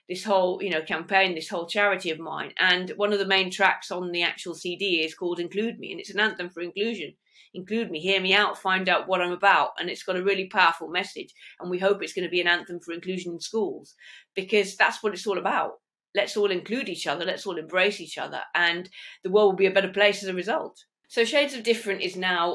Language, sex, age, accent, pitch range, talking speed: English, female, 30-49, British, 155-190 Hz, 245 wpm